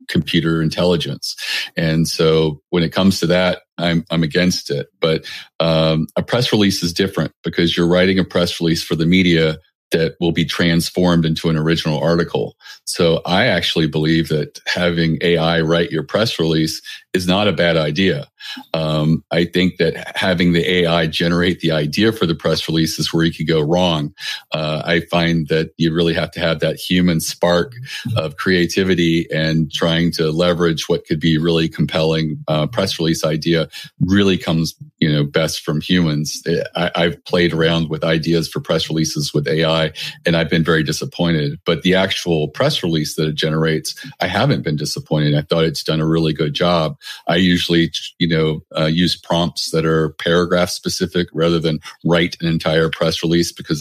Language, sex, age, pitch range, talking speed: English, male, 40-59, 80-85 Hz, 180 wpm